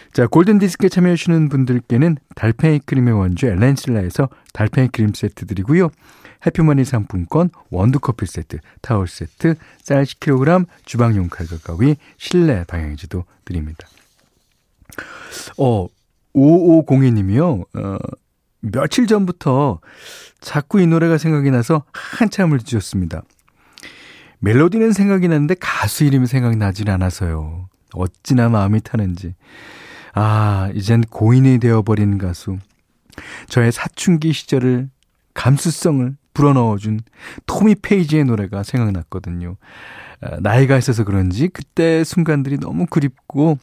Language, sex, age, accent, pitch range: Korean, male, 40-59, native, 95-150 Hz